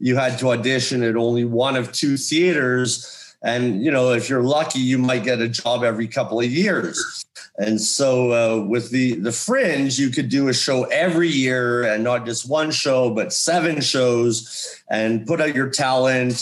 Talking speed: 190 wpm